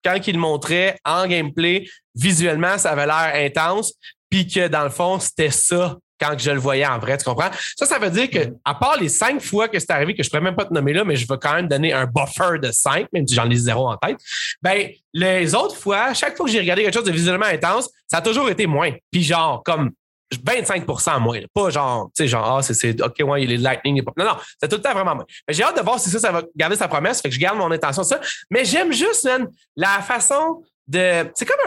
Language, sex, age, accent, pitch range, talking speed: French, male, 30-49, Canadian, 150-215 Hz, 265 wpm